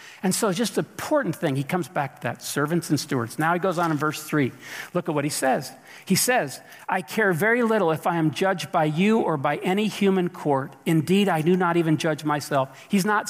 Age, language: 50-69, English